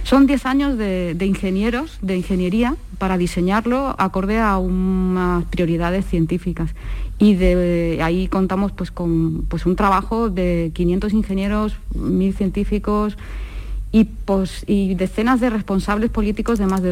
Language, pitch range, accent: Spanish, 180-220 Hz, Spanish